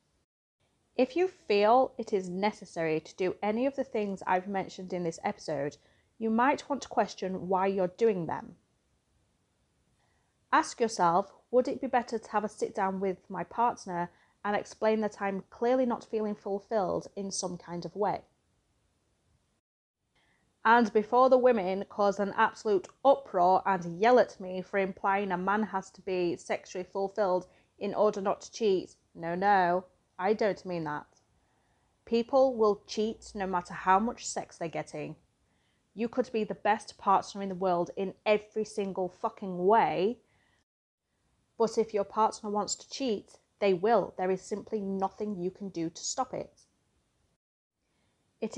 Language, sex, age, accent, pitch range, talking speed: English, female, 30-49, British, 185-225 Hz, 160 wpm